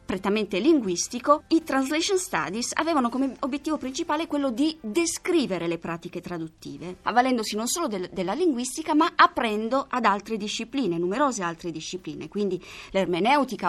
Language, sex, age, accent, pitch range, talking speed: Italian, female, 20-39, native, 195-285 Hz, 130 wpm